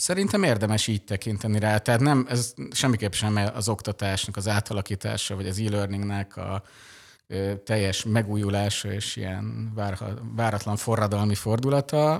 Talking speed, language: 130 wpm, Hungarian